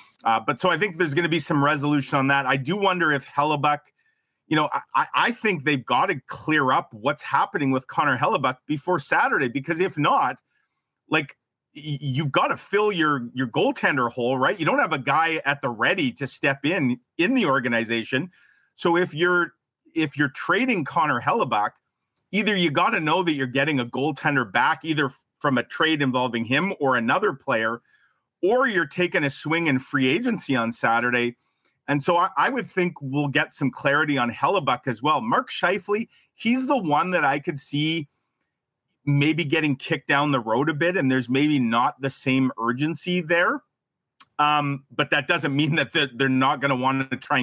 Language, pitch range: English, 130-170 Hz